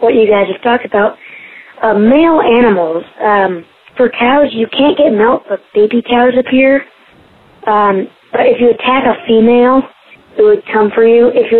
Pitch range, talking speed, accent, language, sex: 195-250 Hz, 175 wpm, American, English, female